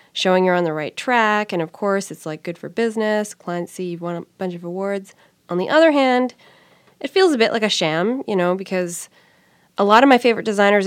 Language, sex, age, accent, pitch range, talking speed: English, female, 20-39, American, 180-220 Hz, 230 wpm